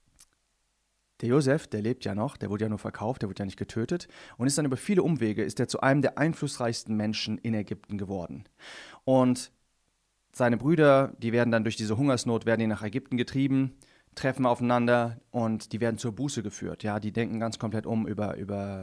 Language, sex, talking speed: English, male, 200 wpm